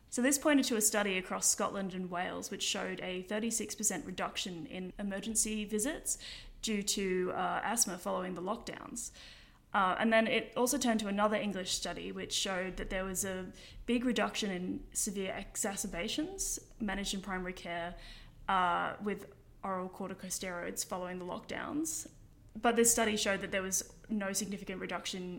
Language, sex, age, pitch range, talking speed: English, female, 10-29, 185-215 Hz, 160 wpm